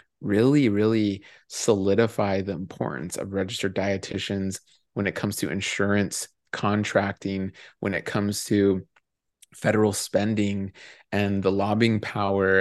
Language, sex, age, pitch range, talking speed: English, male, 30-49, 100-110 Hz, 115 wpm